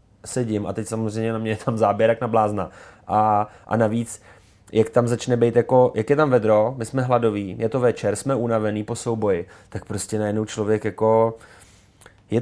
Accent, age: native, 20-39